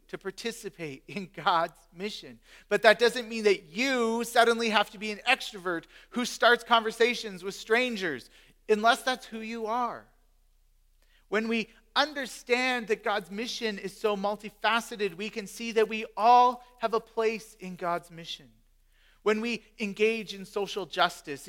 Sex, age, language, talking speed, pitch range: male, 40-59, English, 150 wpm, 165-215 Hz